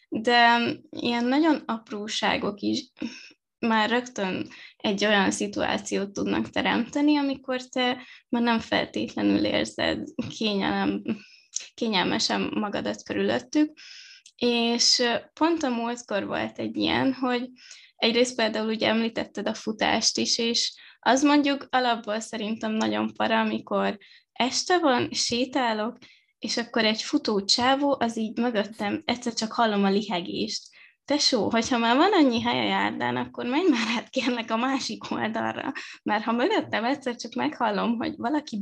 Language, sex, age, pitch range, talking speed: Hungarian, female, 20-39, 215-260 Hz, 130 wpm